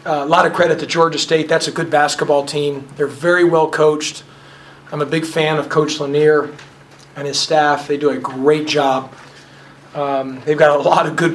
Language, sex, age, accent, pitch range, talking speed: English, male, 40-59, American, 140-160 Hz, 205 wpm